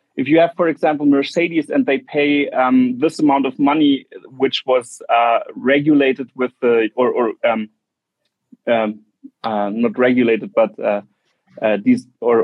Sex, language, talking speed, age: male, English, 155 wpm, 40-59